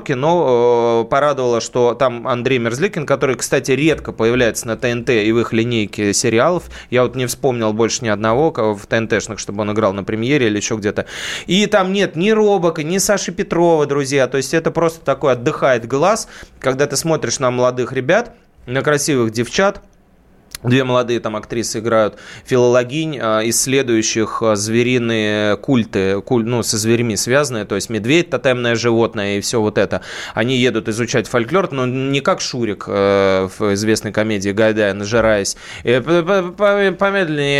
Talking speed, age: 155 wpm, 20-39